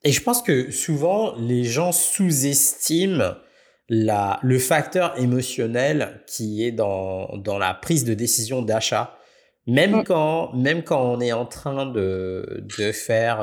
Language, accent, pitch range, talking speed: French, French, 105-140 Hz, 145 wpm